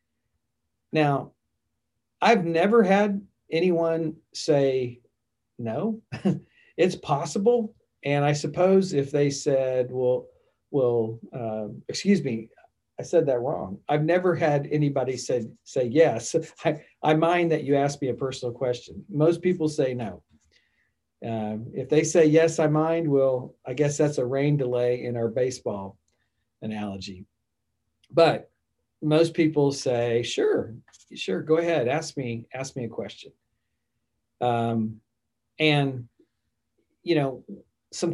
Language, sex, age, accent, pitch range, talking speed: English, male, 50-69, American, 120-160 Hz, 130 wpm